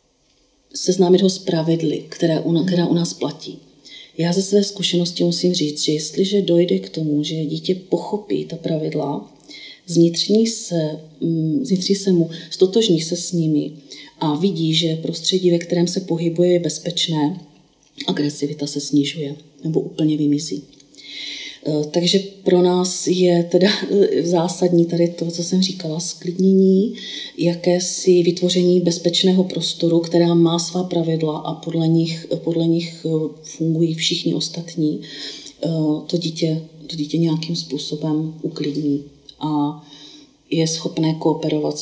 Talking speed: 120 wpm